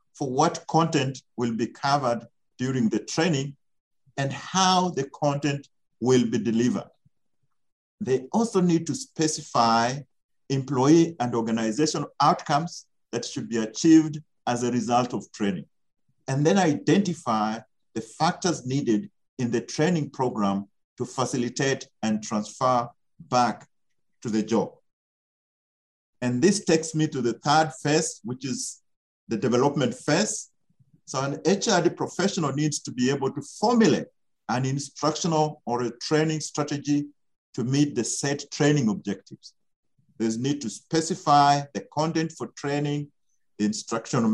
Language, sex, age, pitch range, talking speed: English, male, 50-69, 120-155 Hz, 130 wpm